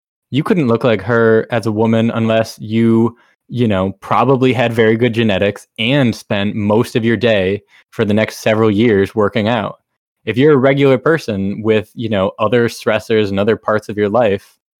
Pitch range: 105-130 Hz